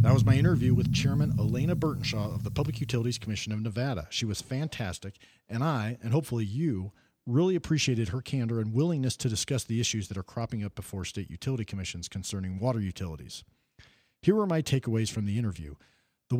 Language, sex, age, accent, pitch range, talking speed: English, male, 50-69, American, 100-135 Hz, 190 wpm